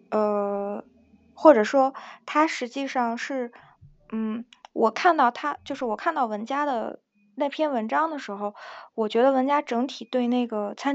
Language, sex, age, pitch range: Chinese, female, 20-39, 220-275 Hz